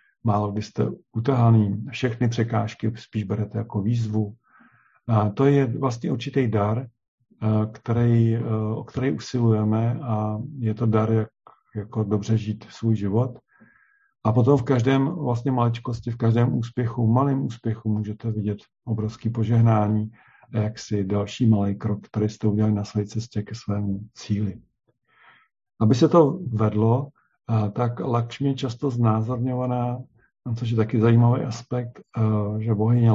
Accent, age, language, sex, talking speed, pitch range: native, 50-69, Czech, male, 135 wpm, 105-120 Hz